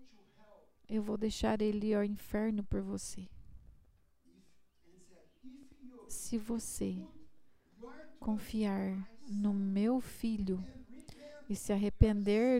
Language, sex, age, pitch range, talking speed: English, female, 40-59, 205-255 Hz, 80 wpm